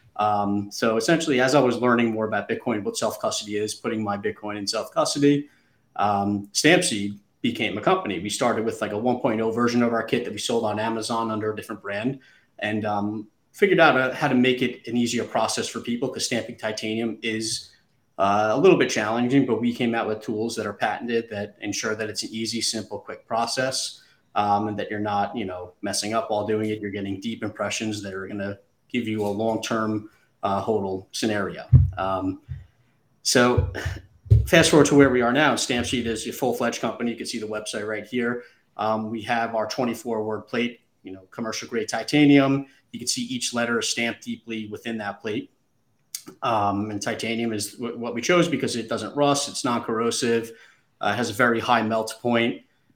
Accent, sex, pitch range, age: American, male, 105-120 Hz, 30-49